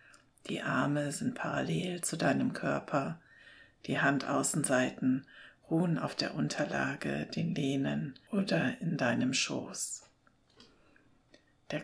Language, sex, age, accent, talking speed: German, female, 60-79, German, 100 wpm